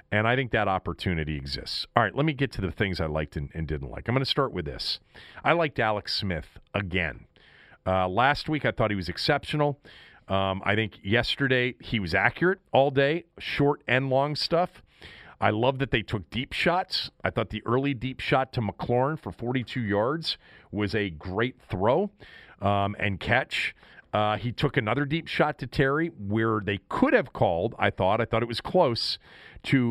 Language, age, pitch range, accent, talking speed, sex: English, 40-59, 100-135 Hz, American, 195 wpm, male